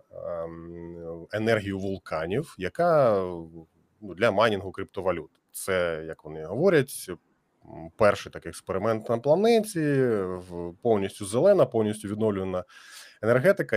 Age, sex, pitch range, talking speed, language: 20-39, male, 95-115 Hz, 85 wpm, Ukrainian